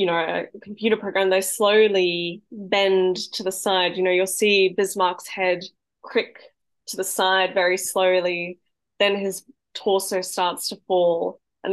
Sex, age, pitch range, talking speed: female, 10-29, 180-205 Hz, 155 wpm